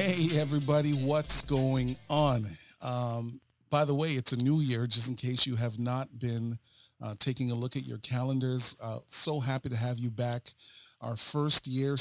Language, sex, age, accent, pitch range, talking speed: English, male, 40-59, American, 120-135 Hz, 185 wpm